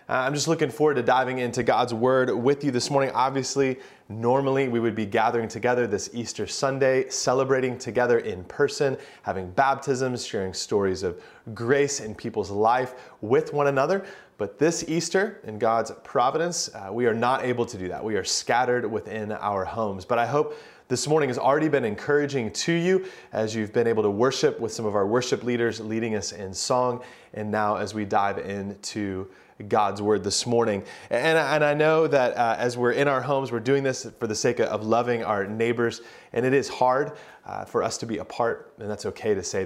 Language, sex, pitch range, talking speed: English, male, 105-135 Hz, 195 wpm